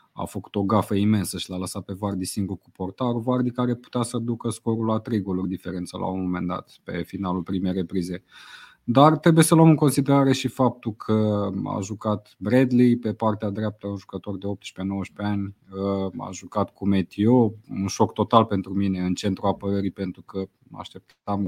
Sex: male